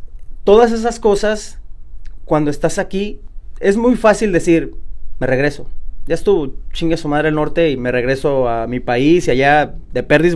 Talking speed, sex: 170 wpm, male